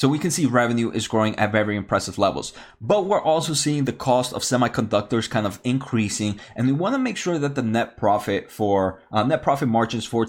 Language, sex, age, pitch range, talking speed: English, male, 20-39, 115-145 Hz, 220 wpm